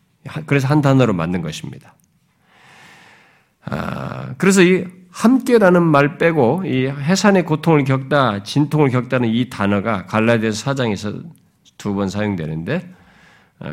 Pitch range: 130-195 Hz